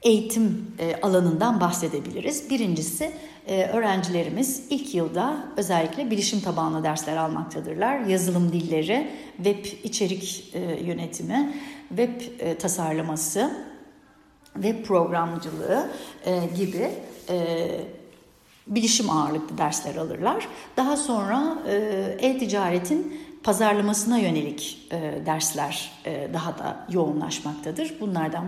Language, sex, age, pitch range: Turkish, female, 60-79, 165-245 Hz